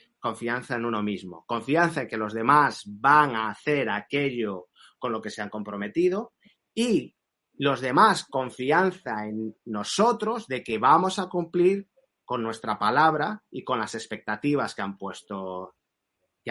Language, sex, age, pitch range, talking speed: Spanish, male, 30-49, 115-175 Hz, 150 wpm